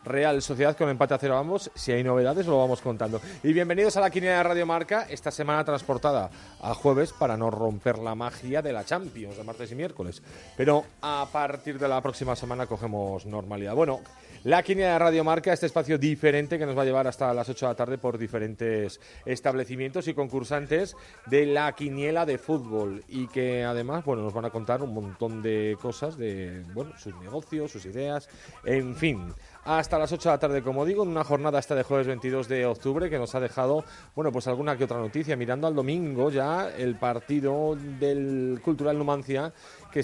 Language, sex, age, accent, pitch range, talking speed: Spanish, male, 30-49, Spanish, 120-150 Hz, 200 wpm